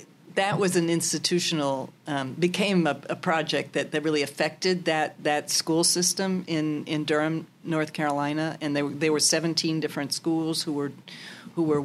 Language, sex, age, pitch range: English, female, 50-69, 150-175 Hz